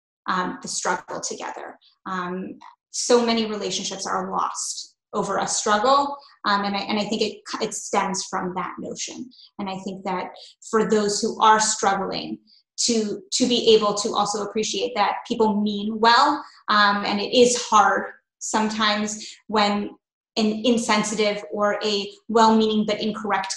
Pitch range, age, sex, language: 200-225 Hz, 20-39, female, English